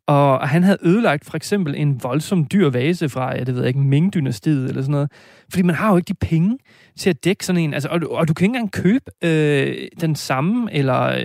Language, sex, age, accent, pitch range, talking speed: Danish, male, 30-49, native, 140-185 Hz, 230 wpm